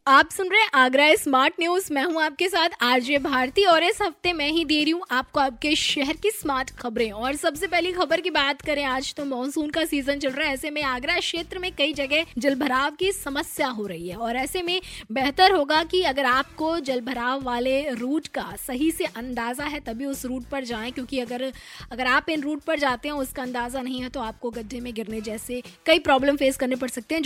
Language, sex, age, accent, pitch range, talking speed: Hindi, female, 20-39, native, 245-310 Hz, 225 wpm